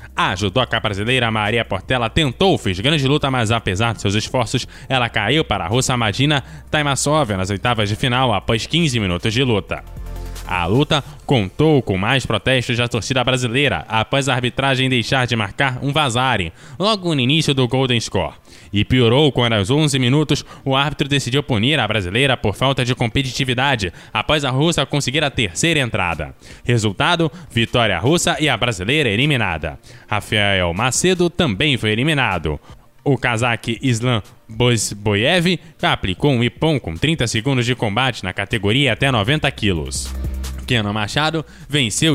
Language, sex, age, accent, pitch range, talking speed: Portuguese, male, 10-29, Brazilian, 105-140 Hz, 155 wpm